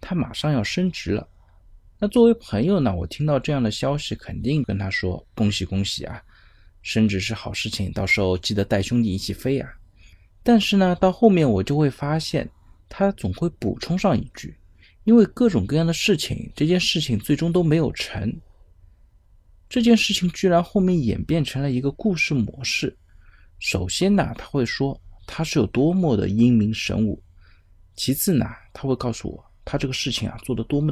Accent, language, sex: native, Chinese, male